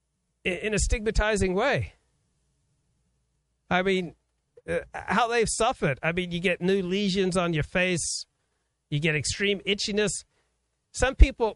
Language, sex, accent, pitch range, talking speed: English, male, American, 175-215 Hz, 125 wpm